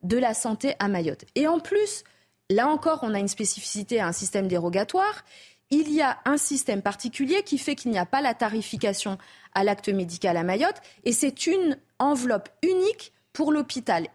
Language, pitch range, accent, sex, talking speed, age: French, 210-310 Hz, French, female, 185 wpm, 20-39